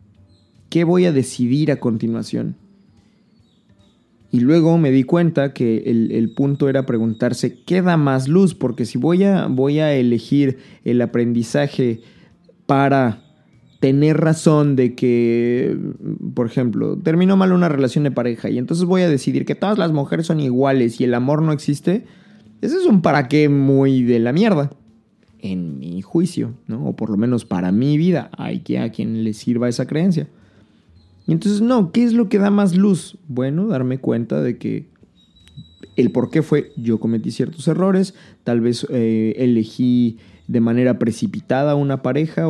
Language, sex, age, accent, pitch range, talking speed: Spanish, male, 20-39, Mexican, 120-150 Hz, 165 wpm